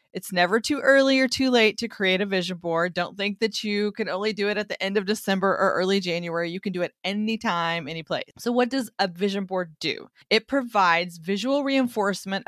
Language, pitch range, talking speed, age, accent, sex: English, 175-230 Hz, 215 wpm, 30-49, American, female